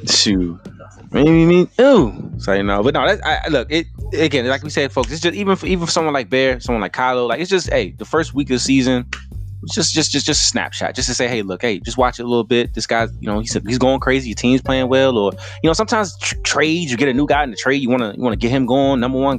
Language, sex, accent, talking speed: English, male, American, 295 wpm